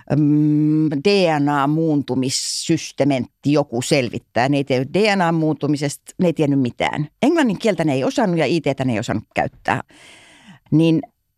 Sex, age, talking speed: female, 60-79, 120 wpm